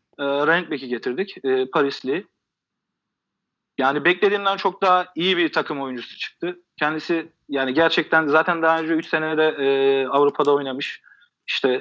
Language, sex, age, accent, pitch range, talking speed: Turkish, male, 40-59, native, 135-175 Hz, 130 wpm